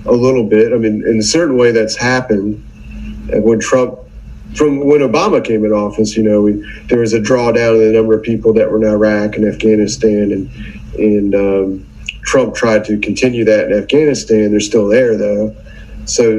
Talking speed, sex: 195 wpm, male